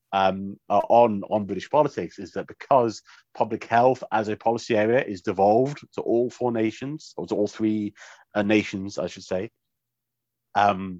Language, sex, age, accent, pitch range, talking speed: English, male, 40-59, British, 100-125 Hz, 165 wpm